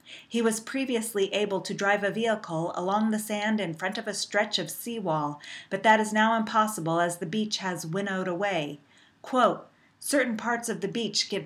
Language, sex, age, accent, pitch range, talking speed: English, female, 40-59, American, 175-215 Hz, 190 wpm